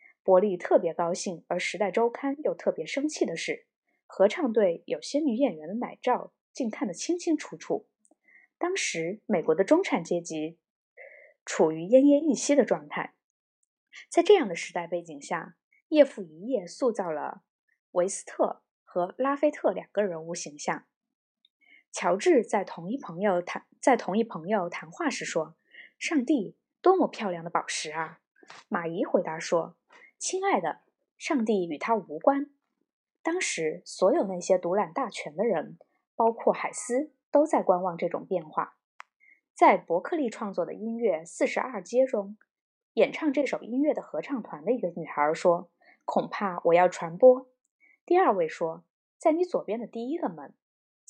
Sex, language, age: female, Chinese, 20-39